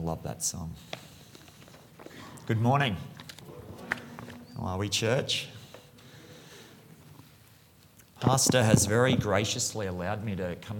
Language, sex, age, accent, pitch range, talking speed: English, male, 30-49, Australian, 115-150 Hz, 95 wpm